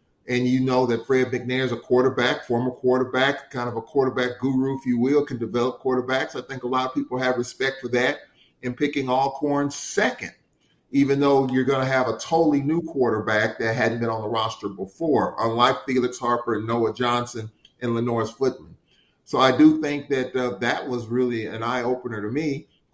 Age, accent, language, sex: 40-59, American, English, male